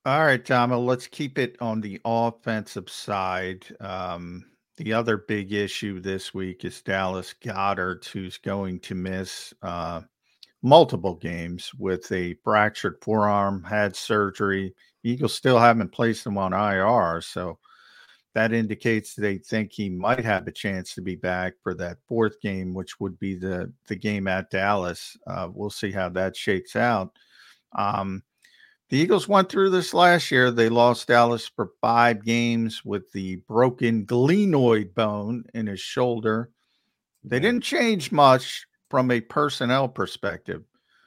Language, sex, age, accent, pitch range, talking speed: English, male, 50-69, American, 95-120 Hz, 150 wpm